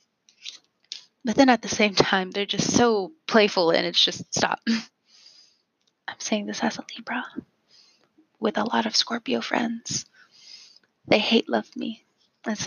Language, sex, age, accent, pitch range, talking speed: English, female, 20-39, American, 180-230 Hz, 145 wpm